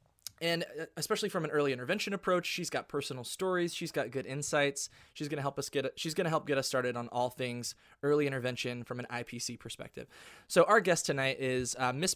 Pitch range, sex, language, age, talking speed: 130-165 Hz, male, English, 20-39, 215 wpm